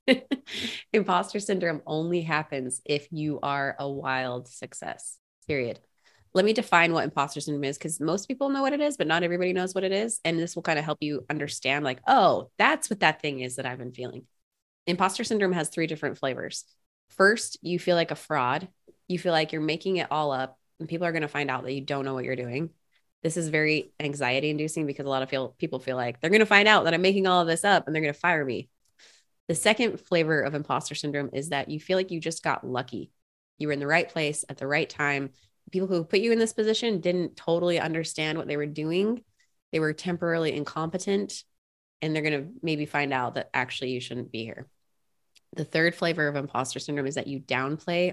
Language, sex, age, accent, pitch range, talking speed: English, female, 20-39, American, 140-175 Hz, 225 wpm